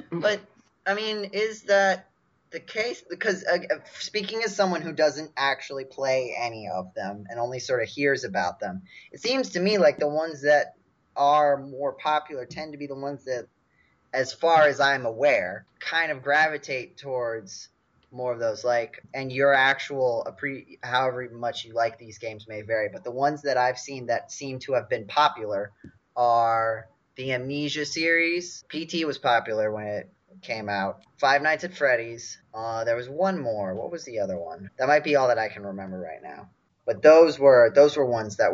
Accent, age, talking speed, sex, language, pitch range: American, 20-39, 190 wpm, male, English, 120-175 Hz